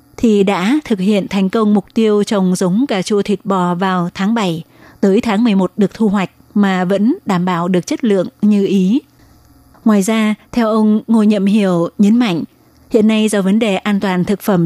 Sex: female